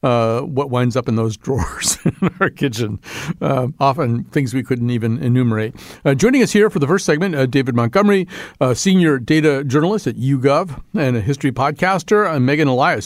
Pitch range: 120-155 Hz